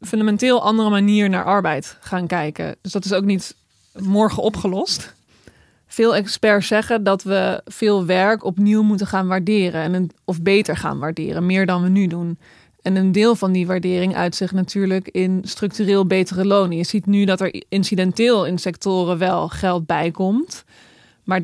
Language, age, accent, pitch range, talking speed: Dutch, 20-39, Dutch, 180-200 Hz, 170 wpm